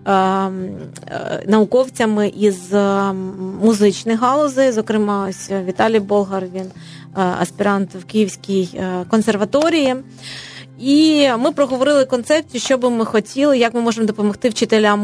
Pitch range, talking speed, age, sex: 200-235 Hz, 105 wpm, 30-49, female